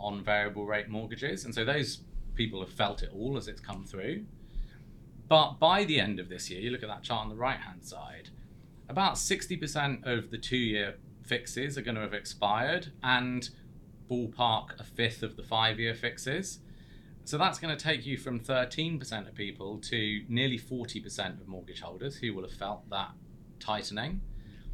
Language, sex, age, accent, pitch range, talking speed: English, male, 30-49, British, 105-135 Hz, 180 wpm